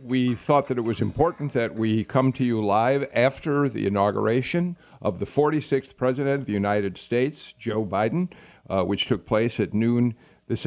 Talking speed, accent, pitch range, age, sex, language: 180 wpm, American, 105-135 Hz, 50-69, male, English